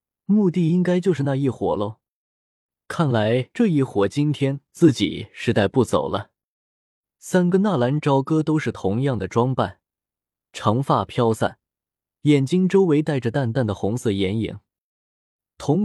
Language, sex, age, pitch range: Chinese, male, 20-39, 105-155 Hz